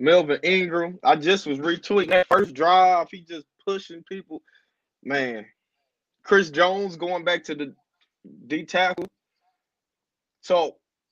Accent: American